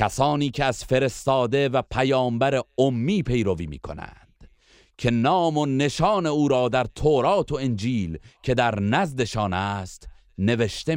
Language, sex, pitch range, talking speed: Persian, male, 100-140 Hz, 135 wpm